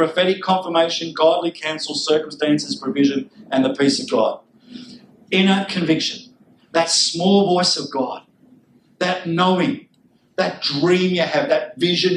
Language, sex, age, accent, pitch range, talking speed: English, male, 50-69, Australian, 160-200 Hz, 130 wpm